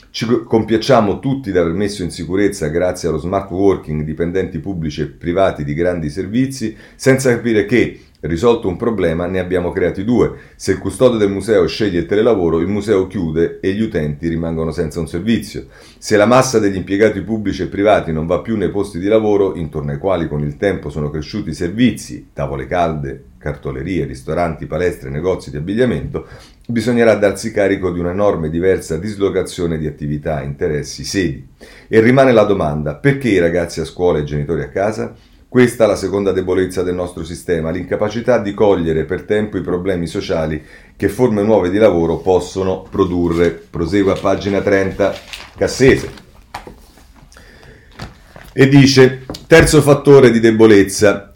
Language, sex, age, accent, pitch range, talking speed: Italian, male, 40-59, native, 80-105 Hz, 160 wpm